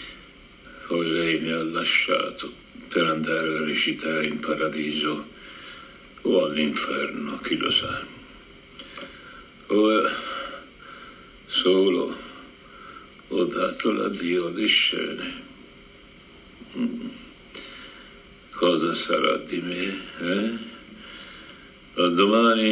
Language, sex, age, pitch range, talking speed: Italian, male, 60-79, 90-105 Hz, 80 wpm